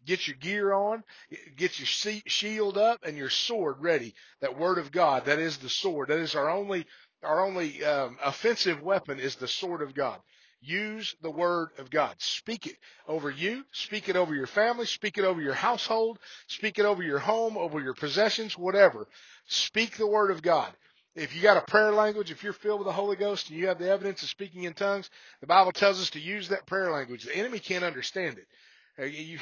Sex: male